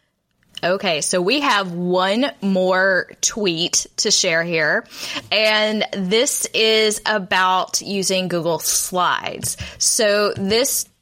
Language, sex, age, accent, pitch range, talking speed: English, female, 10-29, American, 180-220 Hz, 105 wpm